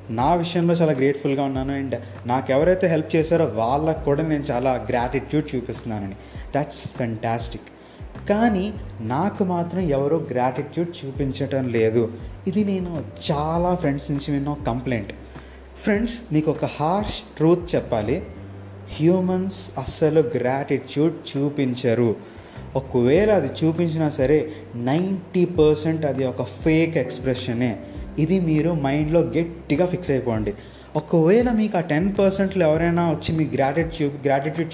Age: 20-39